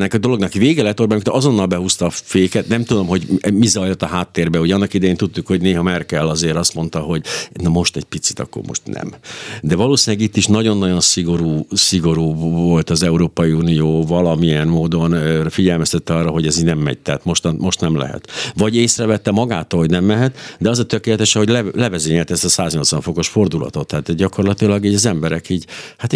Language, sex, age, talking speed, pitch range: Hungarian, male, 60-79, 195 wpm, 80-100 Hz